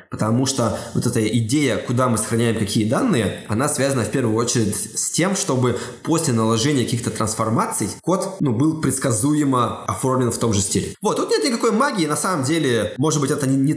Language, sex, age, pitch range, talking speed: Russian, male, 20-39, 110-135 Hz, 190 wpm